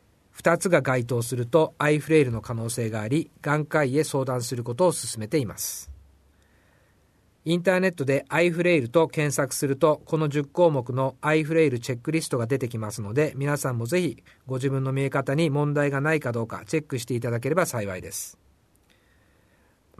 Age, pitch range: 50-69, 115-155 Hz